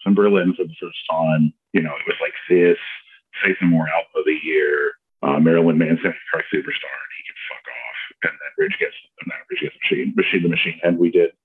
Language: English